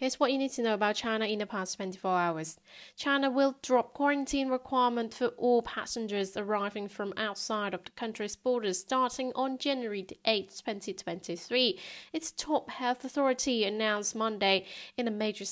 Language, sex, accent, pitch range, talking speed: English, female, British, 195-240 Hz, 165 wpm